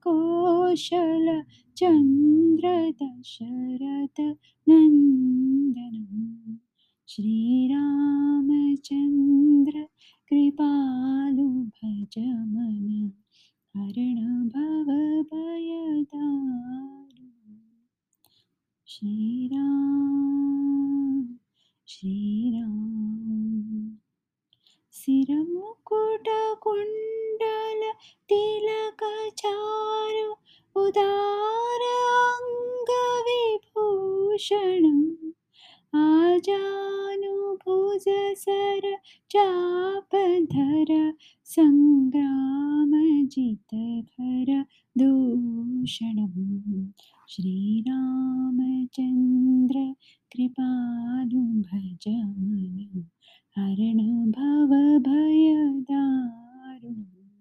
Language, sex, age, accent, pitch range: English, female, 20-39, Indian, 240-350 Hz